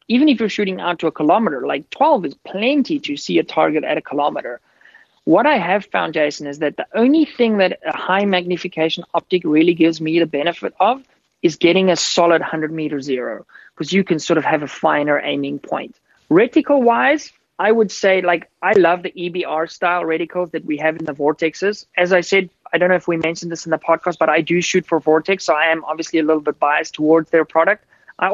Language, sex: English, male